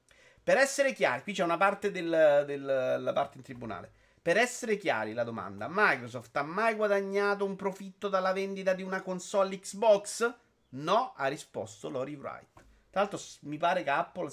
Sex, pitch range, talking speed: male, 140-195 Hz, 170 wpm